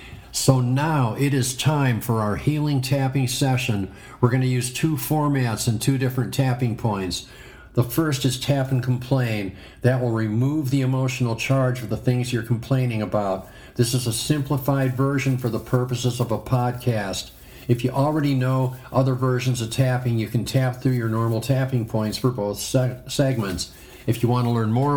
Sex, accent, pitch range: male, American, 115-135 Hz